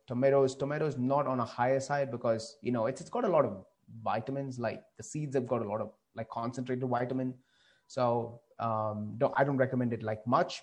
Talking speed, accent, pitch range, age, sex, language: 210 wpm, Indian, 115-140 Hz, 30-49, male, English